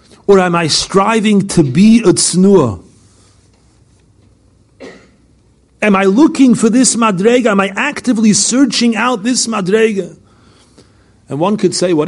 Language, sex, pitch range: English, male, 130-190 Hz